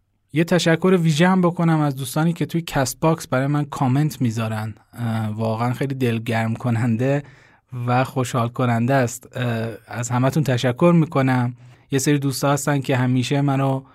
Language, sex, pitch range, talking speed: Persian, male, 120-145 Hz, 145 wpm